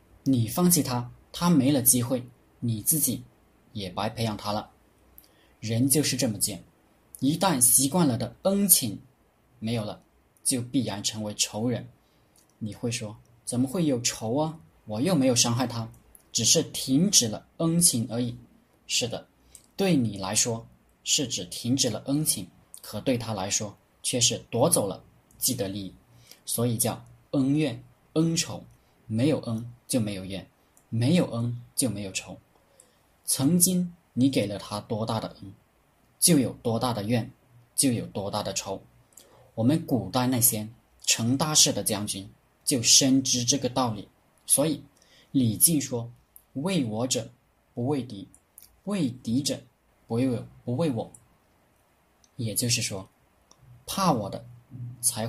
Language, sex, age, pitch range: Chinese, male, 20-39, 110-130 Hz